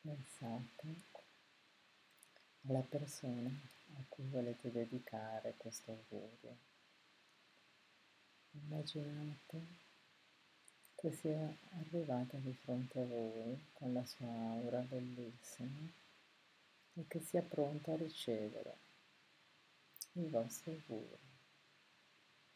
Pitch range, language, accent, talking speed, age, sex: 125-155 Hz, Italian, native, 80 wpm, 50-69, female